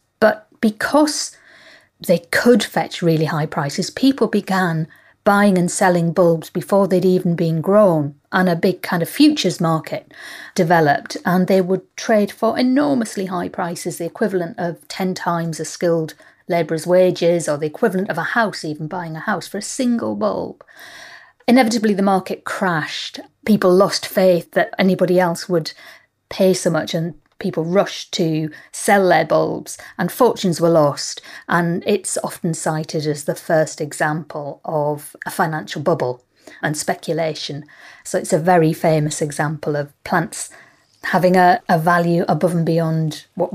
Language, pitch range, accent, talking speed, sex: English, 160-195 Hz, British, 155 wpm, female